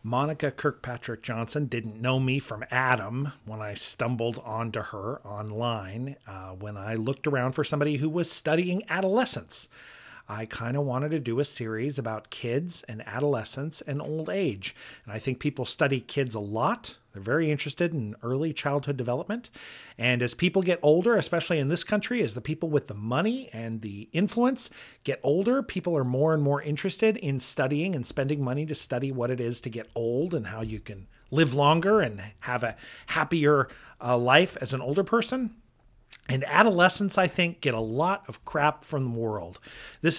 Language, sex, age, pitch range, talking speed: English, male, 40-59, 120-175 Hz, 185 wpm